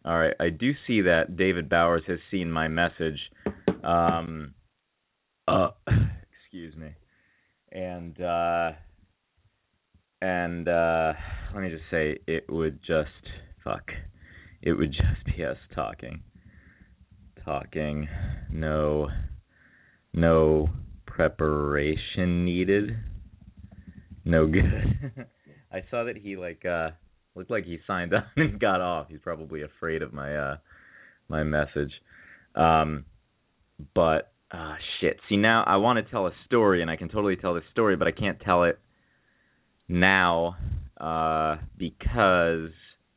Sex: male